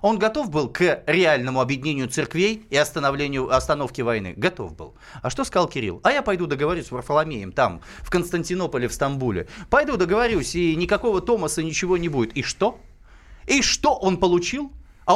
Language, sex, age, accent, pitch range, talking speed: Russian, male, 30-49, native, 140-190 Hz, 165 wpm